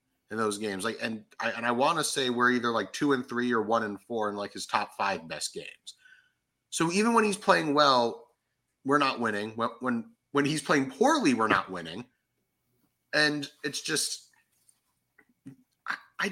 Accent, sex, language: American, male, English